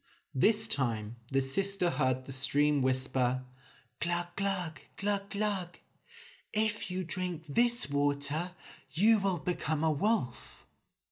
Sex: male